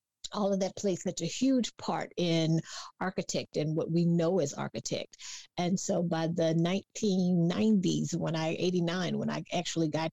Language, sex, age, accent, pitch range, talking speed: English, female, 50-69, American, 155-180 Hz, 165 wpm